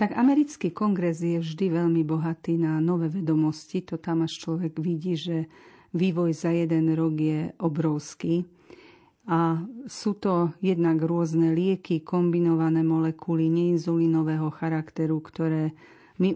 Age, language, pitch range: 40-59, Slovak, 160-180 Hz